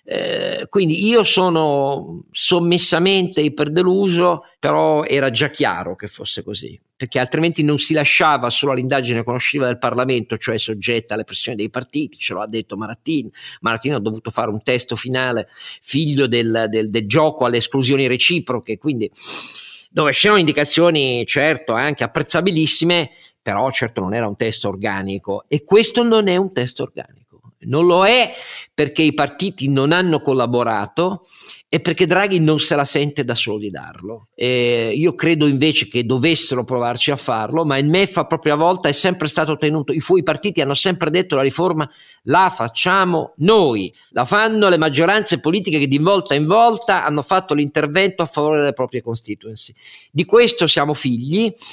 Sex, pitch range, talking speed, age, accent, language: male, 125-175 Hz, 160 wpm, 50-69, native, Italian